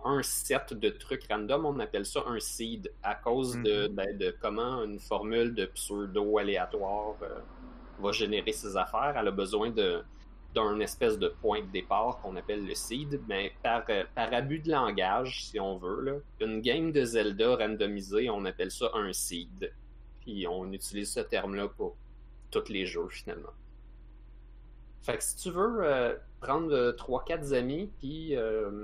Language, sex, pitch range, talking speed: French, male, 90-145 Hz, 160 wpm